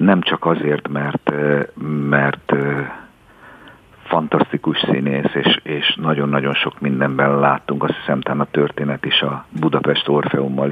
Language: Hungarian